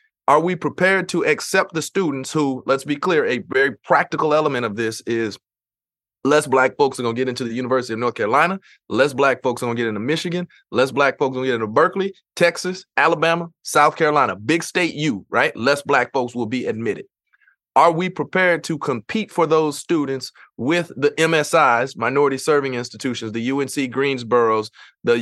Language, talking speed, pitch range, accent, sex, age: English, 195 wpm, 125-160 Hz, American, male, 30-49